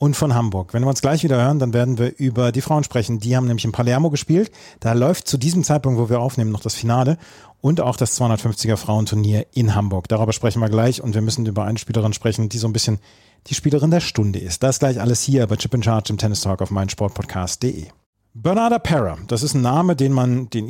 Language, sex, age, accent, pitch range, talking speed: German, male, 40-59, German, 115-150 Hz, 240 wpm